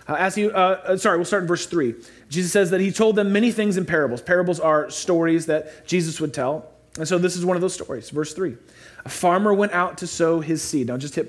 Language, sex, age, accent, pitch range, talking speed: English, male, 30-49, American, 140-195 Hz, 250 wpm